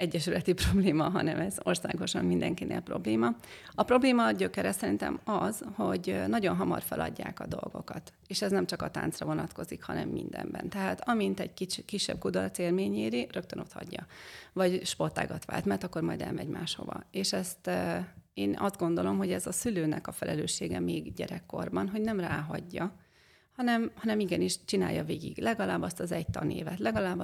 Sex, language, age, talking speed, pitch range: female, Hungarian, 30-49, 160 wpm, 145-215 Hz